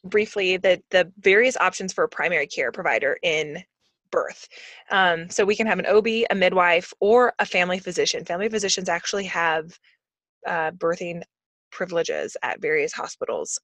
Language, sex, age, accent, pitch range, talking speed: English, female, 20-39, American, 175-240 Hz, 155 wpm